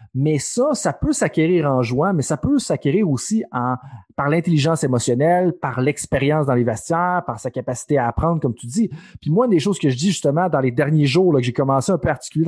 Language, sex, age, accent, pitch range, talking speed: French, male, 30-49, Canadian, 130-175 Hz, 235 wpm